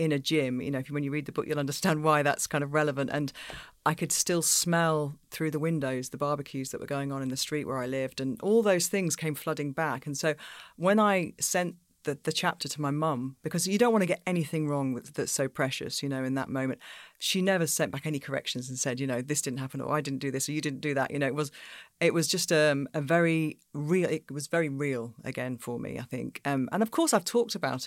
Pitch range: 130-155 Hz